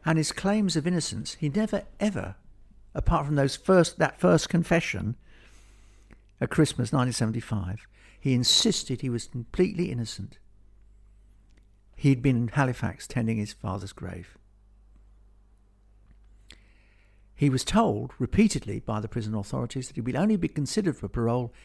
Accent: British